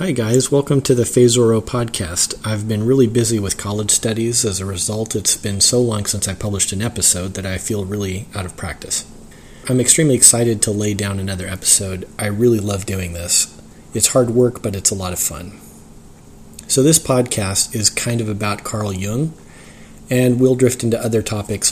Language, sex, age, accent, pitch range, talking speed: English, male, 30-49, American, 95-120 Hz, 195 wpm